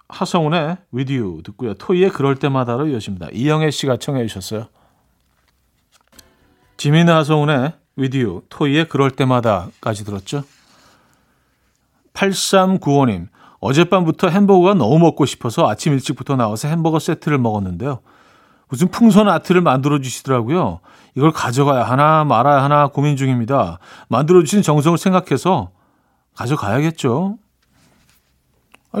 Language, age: Korean, 40-59